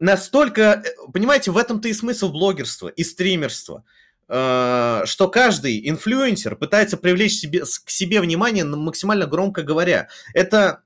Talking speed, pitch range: 125 wpm, 145-210 Hz